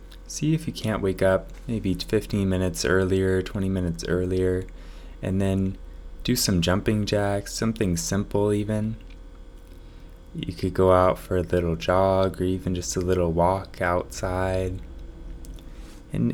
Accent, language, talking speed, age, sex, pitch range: American, English, 140 wpm, 20-39, male, 85-100 Hz